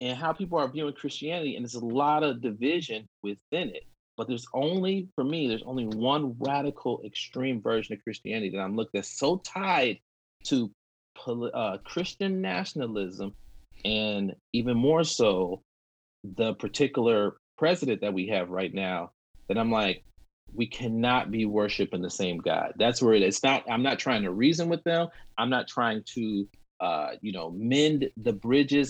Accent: American